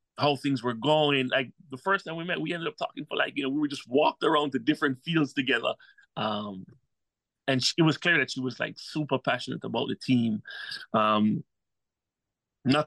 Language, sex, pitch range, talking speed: English, male, 125-155 Hz, 205 wpm